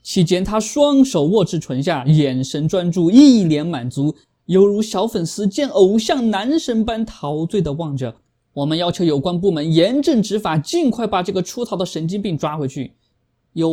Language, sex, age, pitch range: Chinese, male, 20-39, 140-220 Hz